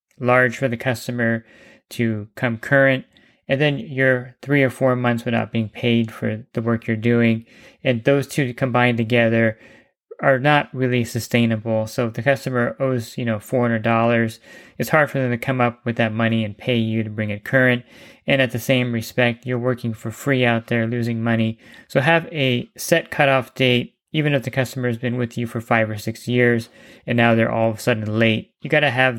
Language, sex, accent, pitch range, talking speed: English, male, American, 115-130 Hz, 205 wpm